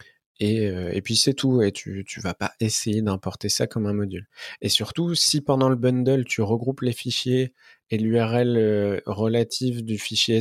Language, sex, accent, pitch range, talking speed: French, male, French, 100-130 Hz, 180 wpm